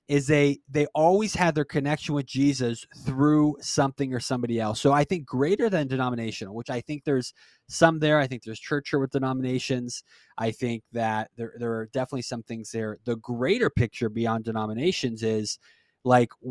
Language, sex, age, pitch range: English, male, 20-39, 120-150 Hz